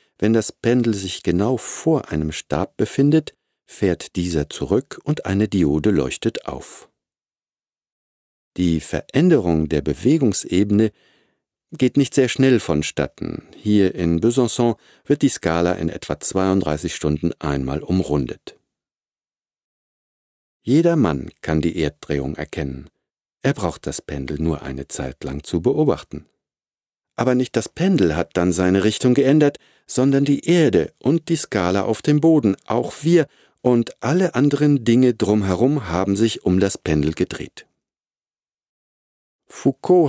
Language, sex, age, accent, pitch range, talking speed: German, male, 50-69, German, 85-130 Hz, 130 wpm